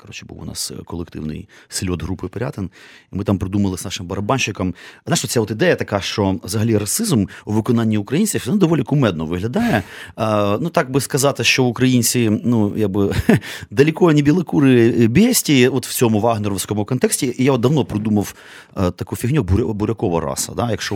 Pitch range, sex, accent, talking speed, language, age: 90-125 Hz, male, native, 175 wpm, Ukrainian, 30-49